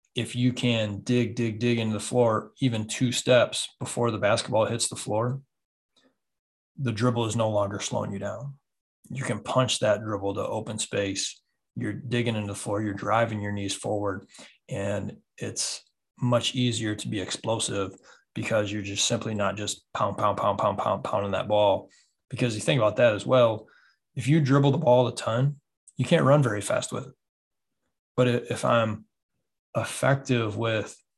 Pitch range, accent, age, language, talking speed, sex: 105-125 Hz, American, 20-39, English, 175 wpm, male